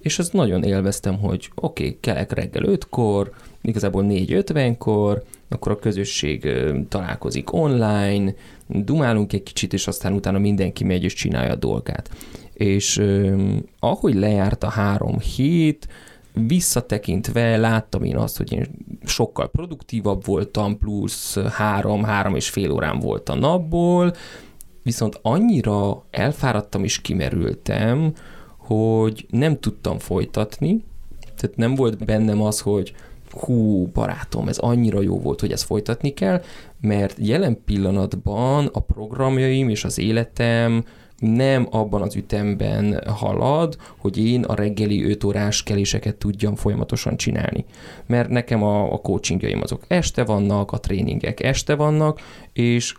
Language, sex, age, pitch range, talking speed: Hungarian, male, 30-49, 100-120 Hz, 130 wpm